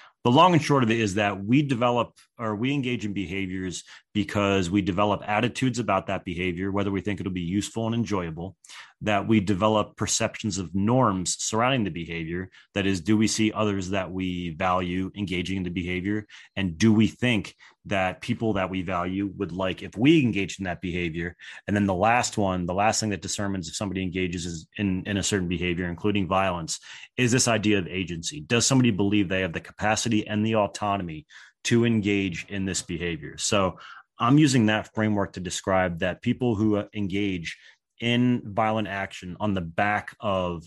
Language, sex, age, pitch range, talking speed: English, male, 30-49, 95-110 Hz, 185 wpm